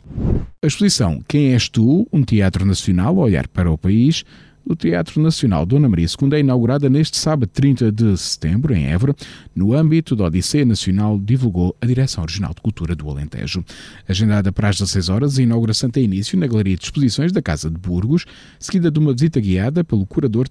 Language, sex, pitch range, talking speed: Portuguese, male, 95-140 Hz, 190 wpm